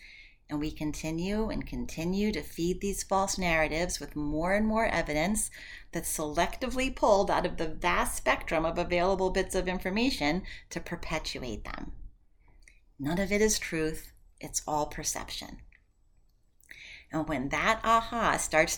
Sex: female